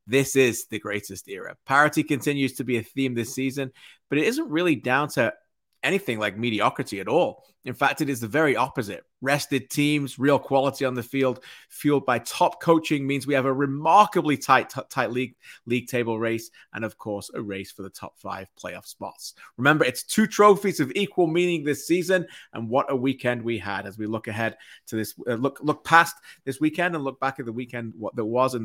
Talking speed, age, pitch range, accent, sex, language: 210 wpm, 30-49, 115-140 Hz, British, male, English